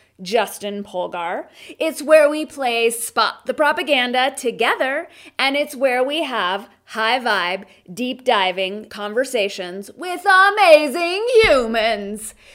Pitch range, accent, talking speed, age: 210-315 Hz, American, 100 wpm, 30-49